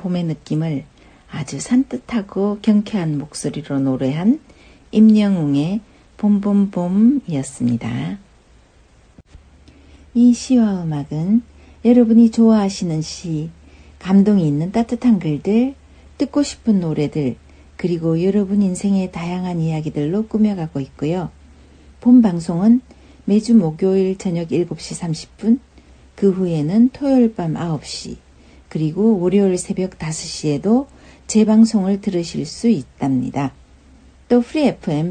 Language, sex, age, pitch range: Korean, female, 60-79, 150-220 Hz